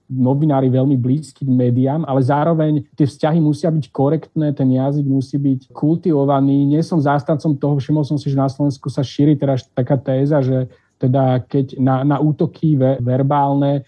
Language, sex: Slovak, male